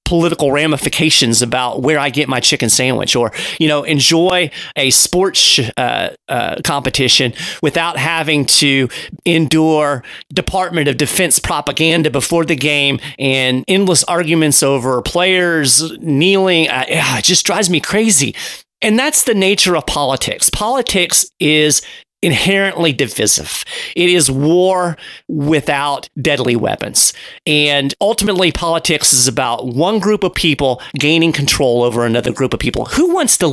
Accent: American